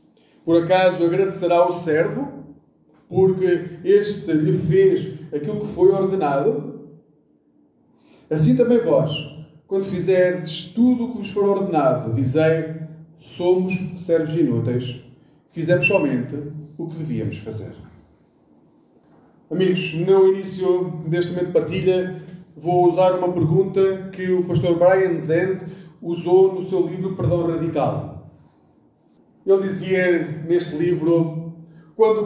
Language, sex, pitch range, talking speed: Portuguese, male, 160-205 Hz, 115 wpm